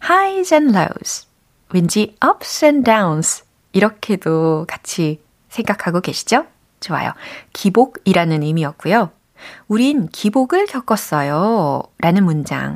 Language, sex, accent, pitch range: Korean, female, native, 170-265 Hz